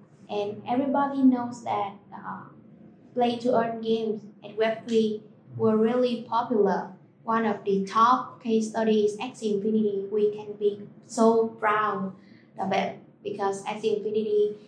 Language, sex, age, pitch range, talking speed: Vietnamese, female, 20-39, 195-220 Hz, 125 wpm